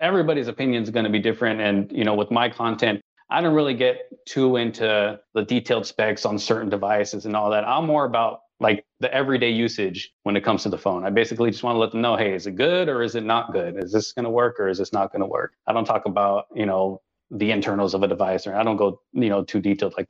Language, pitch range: English, 105-120 Hz